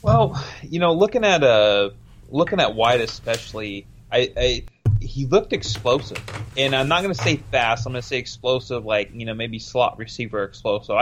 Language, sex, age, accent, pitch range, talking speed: English, male, 30-49, American, 115-130 Hz, 190 wpm